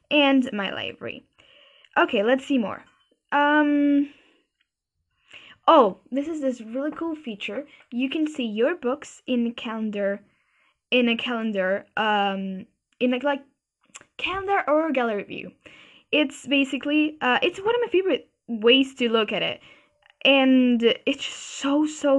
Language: English